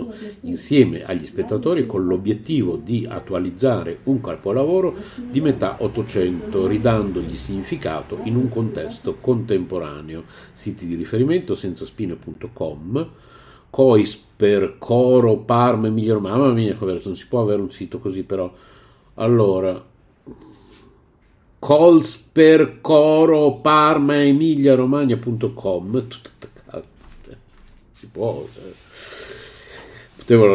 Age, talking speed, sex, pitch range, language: 50-69, 100 wpm, male, 100-130 Hz, Italian